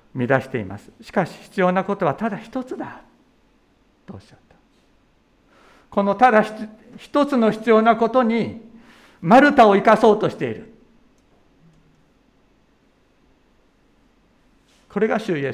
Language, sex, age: Japanese, male, 60-79